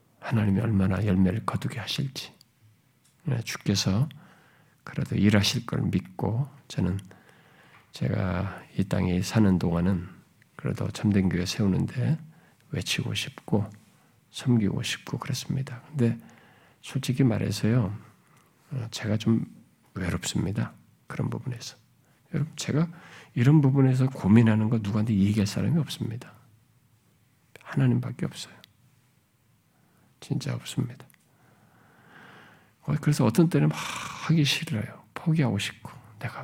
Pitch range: 110-150 Hz